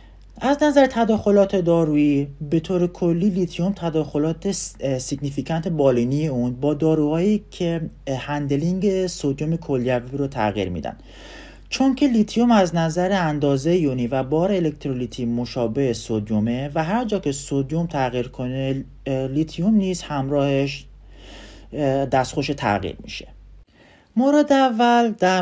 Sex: male